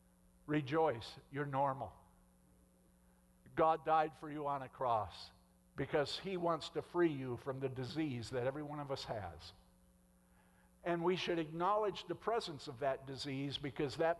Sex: male